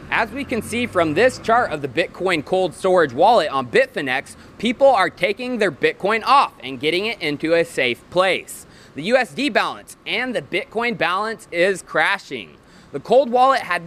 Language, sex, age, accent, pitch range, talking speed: English, male, 20-39, American, 165-225 Hz, 175 wpm